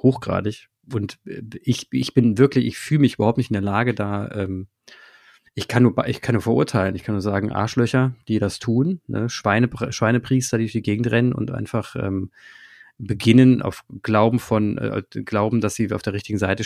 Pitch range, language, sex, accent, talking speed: 105-125 Hz, German, male, German, 195 wpm